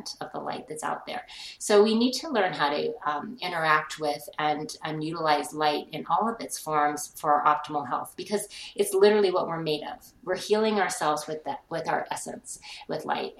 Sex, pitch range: female, 155-185 Hz